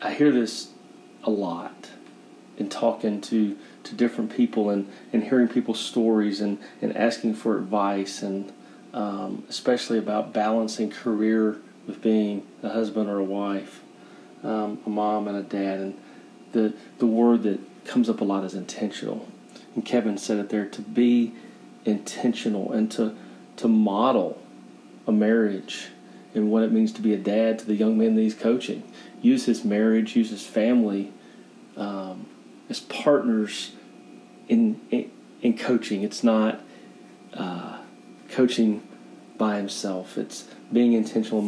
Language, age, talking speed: English, 30-49, 145 wpm